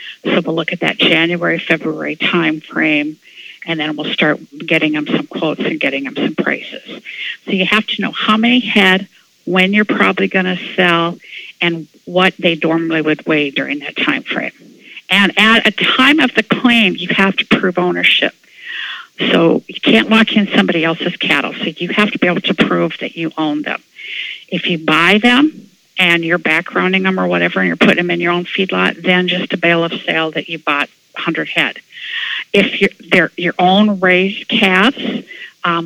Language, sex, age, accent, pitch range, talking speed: English, female, 50-69, American, 165-205 Hz, 190 wpm